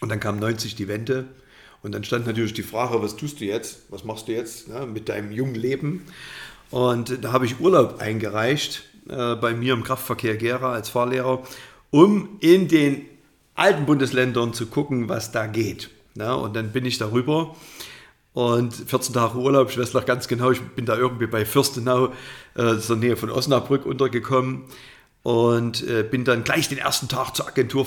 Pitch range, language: 115-135 Hz, German